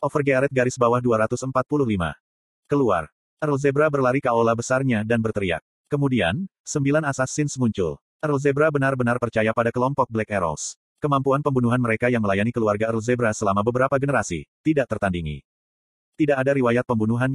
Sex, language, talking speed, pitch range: male, Indonesian, 145 wpm, 110-140 Hz